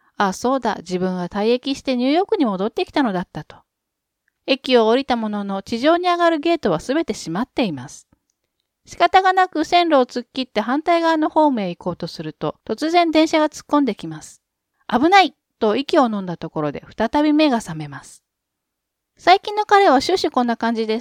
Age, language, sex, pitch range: 40-59, Japanese, female, 200-310 Hz